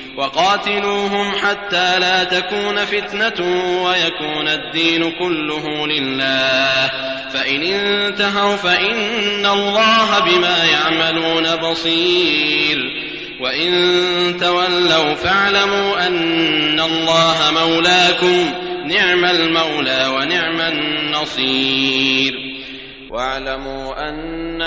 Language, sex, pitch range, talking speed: English, male, 135-170 Hz, 70 wpm